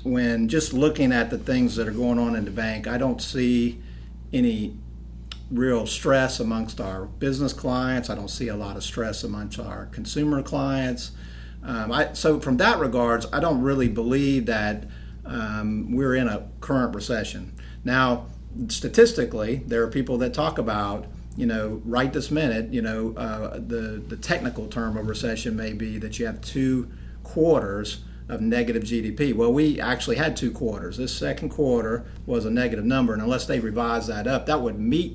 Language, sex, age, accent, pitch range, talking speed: English, male, 50-69, American, 105-125 Hz, 180 wpm